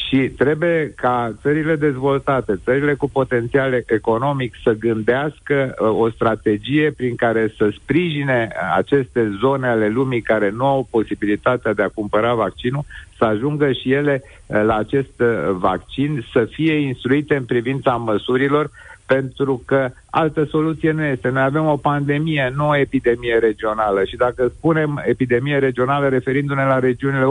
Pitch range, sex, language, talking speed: 120-145 Hz, male, Romanian, 140 wpm